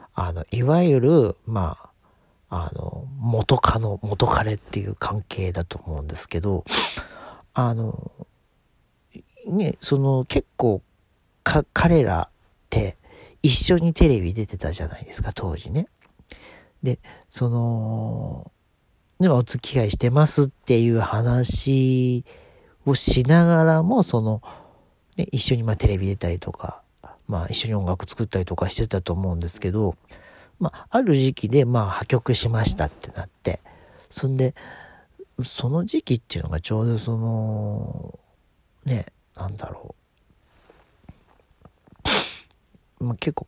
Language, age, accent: Japanese, 40-59, native